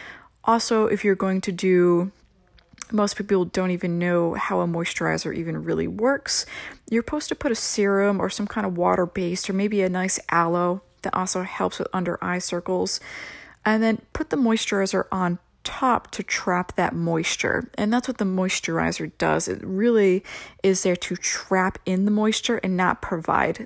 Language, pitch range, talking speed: English, 180-220 Hz, 175 wpm